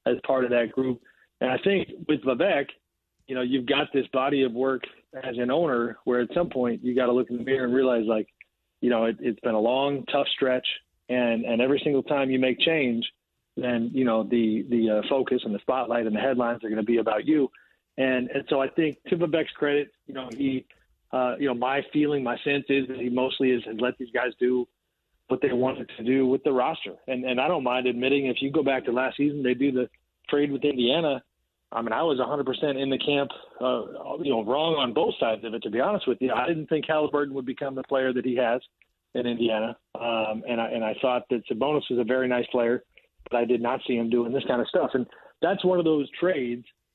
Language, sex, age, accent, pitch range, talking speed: English, male, 30-49, American, 120-140 Hz, 245 wpm